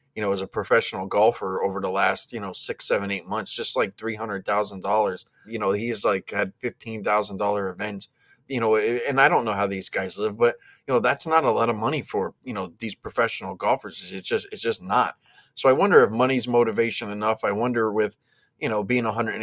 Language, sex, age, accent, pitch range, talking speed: English, male, 20-39, American, 105-125 Hz, 210 wpm